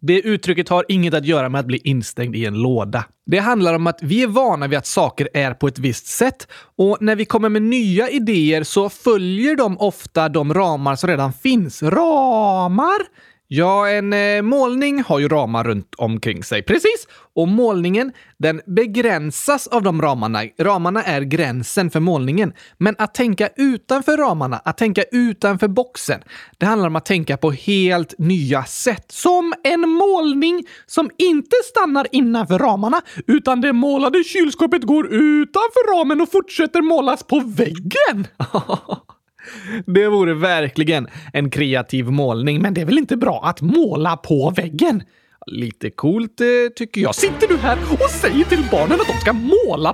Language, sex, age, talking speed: Swedish, male, 20-39, 165 wpm